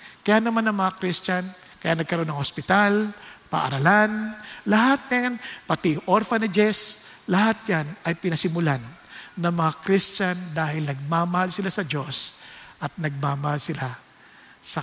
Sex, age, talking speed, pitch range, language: male, 50-69, 120 wpm, 155-205 Hz, English